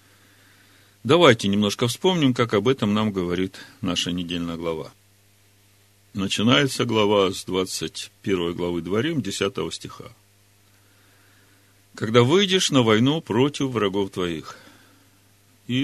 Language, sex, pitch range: Russian, male, 100-125 Hz